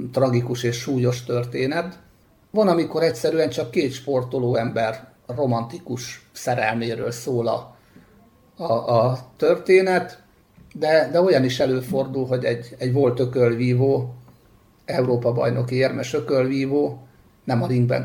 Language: Hungarian